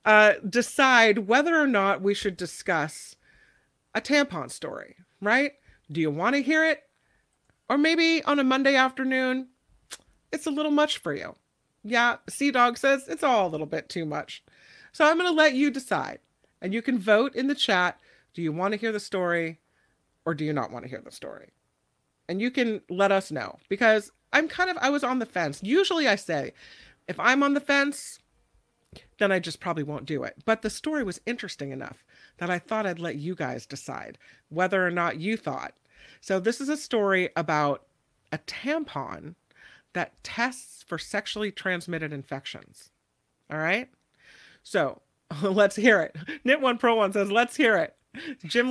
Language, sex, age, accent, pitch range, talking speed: English, female, 40-59, American, 175-265 Hz, 185 wpm